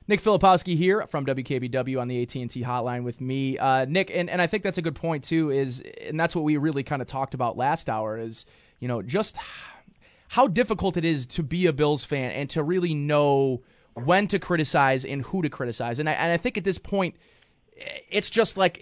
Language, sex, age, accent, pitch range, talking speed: English, male, 20-39, American, 140-185 Hz, 215 wpm